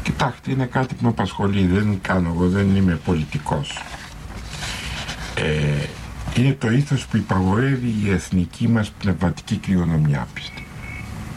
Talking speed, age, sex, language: 120 wpm, 70-89, male, Greek